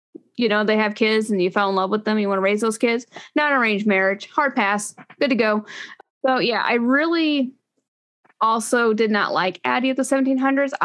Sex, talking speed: female, 210 wpm